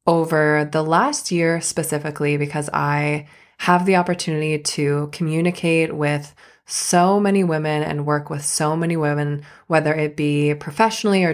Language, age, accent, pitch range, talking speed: English, 20-39, American, 150-180 Hz, 145 wpm